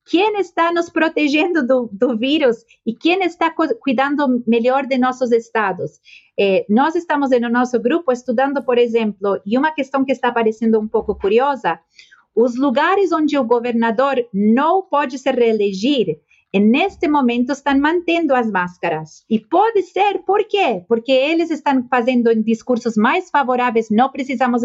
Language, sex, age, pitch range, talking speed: Portuguese, female, 40-59, 225-285 Hz, 155 wpm